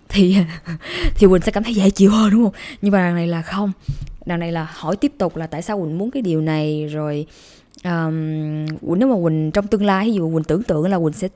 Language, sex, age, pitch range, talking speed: Vietnamese, female, 20-39, 170-235 Hz, 255 wpm